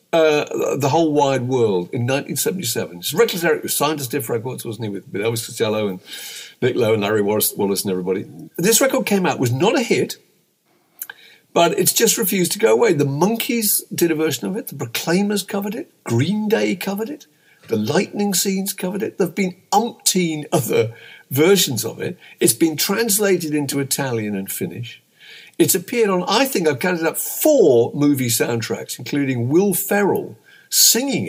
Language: English